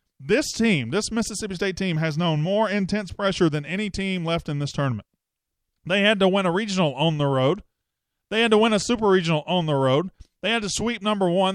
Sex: male